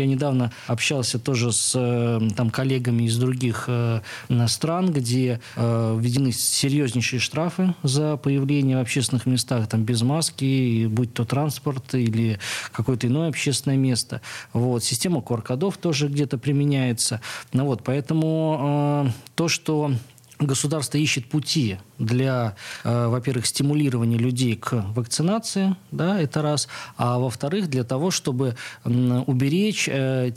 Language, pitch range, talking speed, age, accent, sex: Russian, 120-145 Hz, 115 wpm, 20-39, native, male